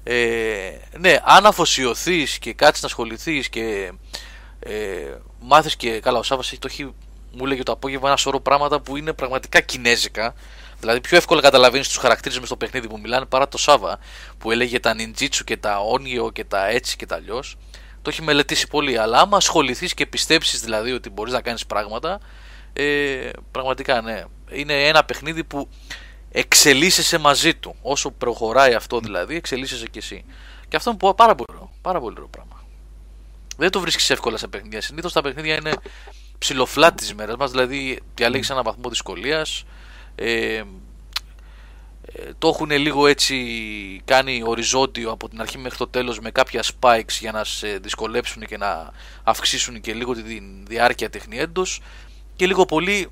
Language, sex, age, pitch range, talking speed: Greek, male, 20-39, 115-145 Hz, 160 wpm